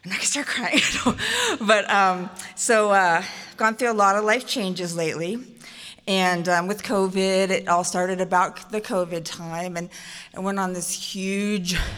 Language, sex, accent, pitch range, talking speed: English, female, American, 170-215 Hz, 165 wpm